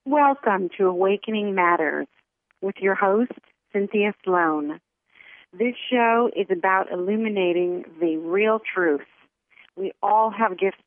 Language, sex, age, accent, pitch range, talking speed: English, female, 40-59, American, 180-220 Hz, 115 wpm